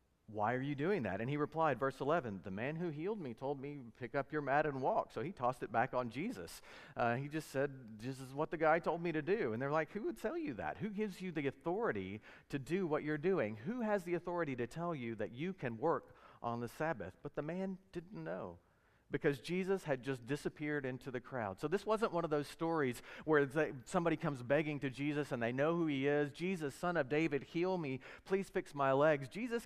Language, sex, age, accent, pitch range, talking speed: English, male, 40-59, American, 125-165 Hz, 240 wpm